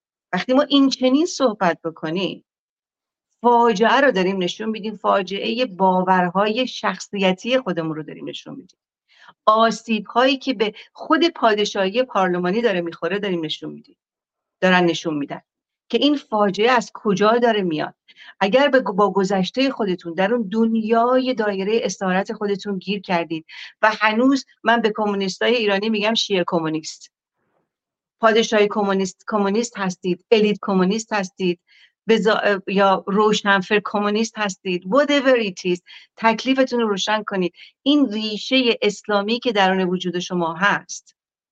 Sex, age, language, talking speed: female, 40-59, Persian, 120 wpm